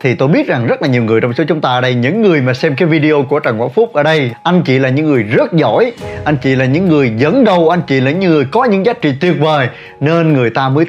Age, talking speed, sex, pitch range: 20-39, 300 wpm, male, 130-195 Hz